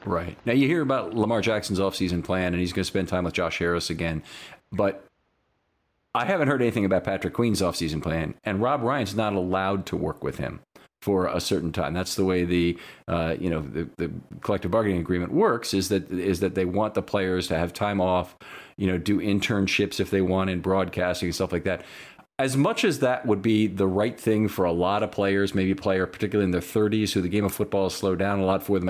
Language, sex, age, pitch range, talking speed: English, male, 40-59, 90-105 Hz, 235 wpm